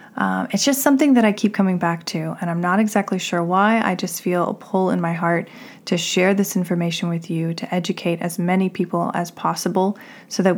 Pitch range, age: 170-205 Hz, 20-39